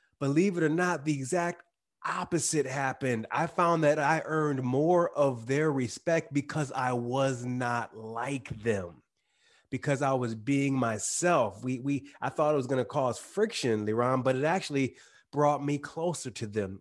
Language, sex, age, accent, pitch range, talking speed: English, male, 30-49, American, 125-155 Hz, 165 wpm